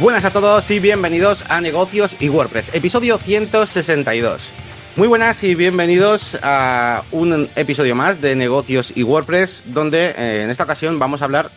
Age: 30-49